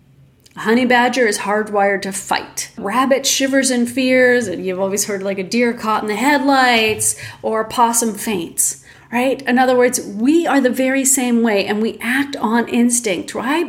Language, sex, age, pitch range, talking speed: English, female, 40-59, 200-255 Hz, 190 wpm